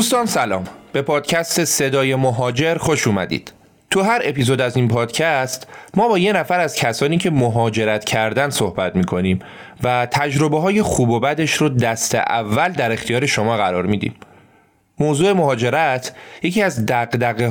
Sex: male